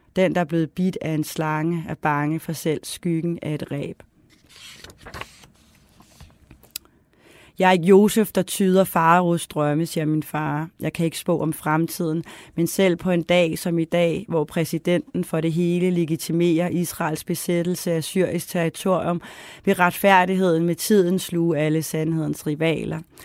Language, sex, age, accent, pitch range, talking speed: Danish, female, 30-49, native, 155-180 Hz, 150 wpm